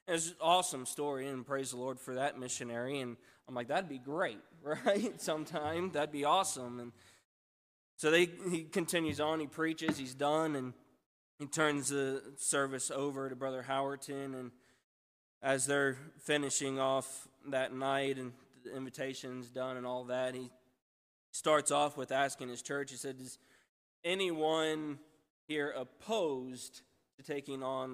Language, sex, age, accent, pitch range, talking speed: English, male, 20-39, American, 125-150 Hz, 155 wpm